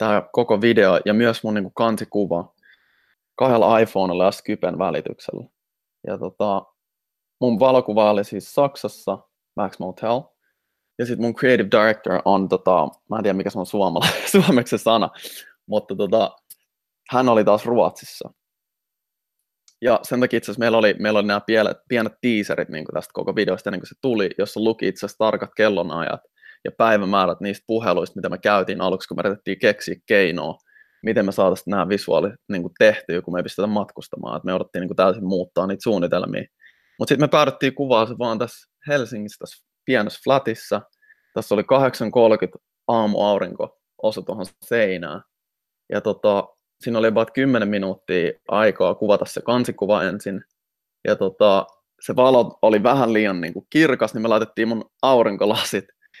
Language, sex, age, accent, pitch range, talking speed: Finnish, male, 20-39, native, 100-120 Hz, 150 wpm